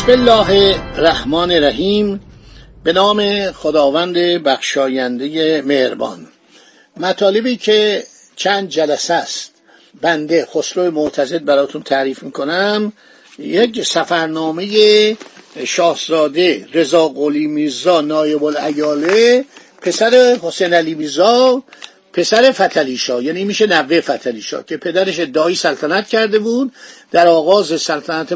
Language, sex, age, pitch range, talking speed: Persian, male, 50-69, 150-200 Hz, 105 wpm